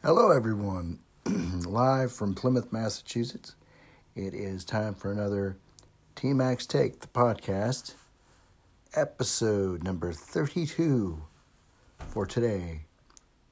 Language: English